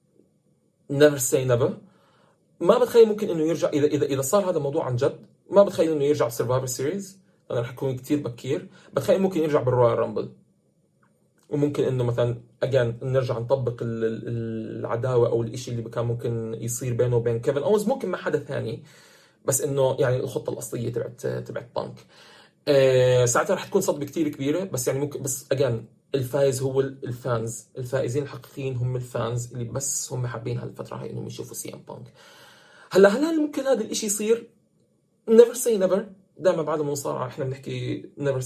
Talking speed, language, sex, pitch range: 165 wpm, Arabic, male, 120-175 Hz